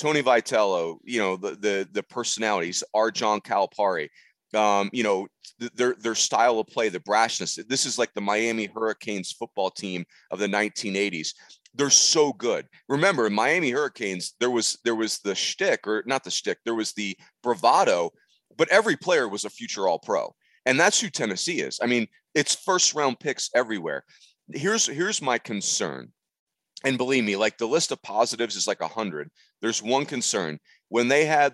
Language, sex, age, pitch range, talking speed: English, male, 30-49, 100-125 Hz, 185 wpm